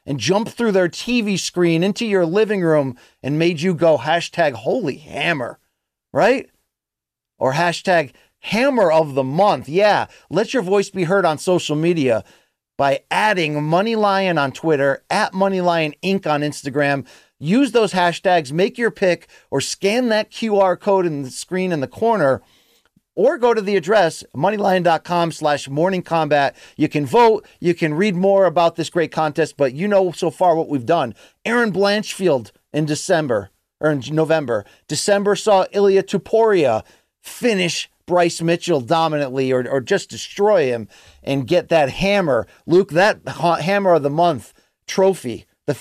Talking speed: 155 wpm